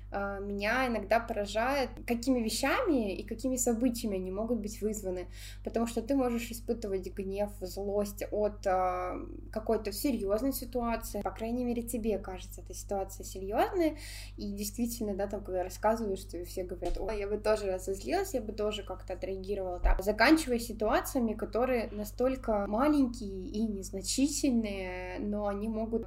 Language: Russian